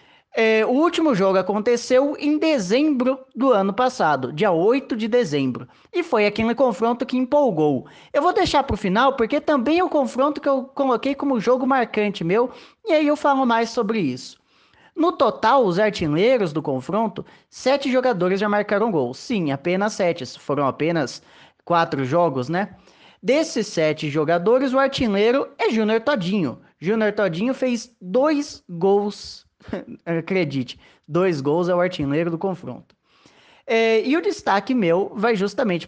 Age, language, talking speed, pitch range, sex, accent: 20-39, Portuguese, 155 wpm, 175-260 Hz, male, Brazilian